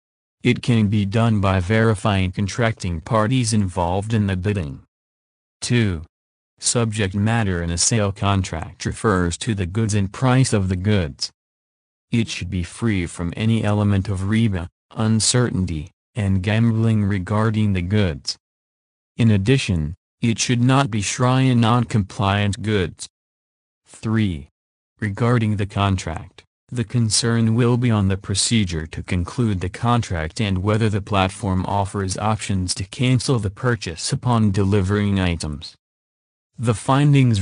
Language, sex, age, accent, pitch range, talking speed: English, male, 40-59, American, 90-115 Hz, 135 wpm